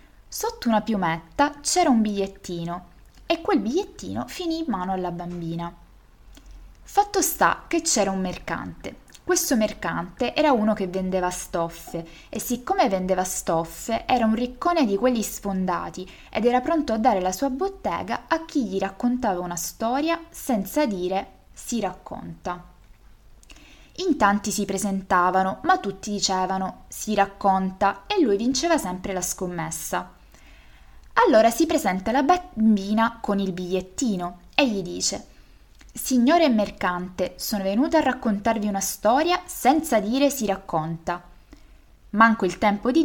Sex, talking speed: female, 135 wpm